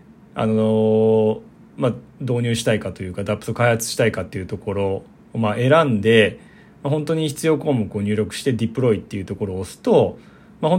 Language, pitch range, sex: Japanese, 110-145 Hz, male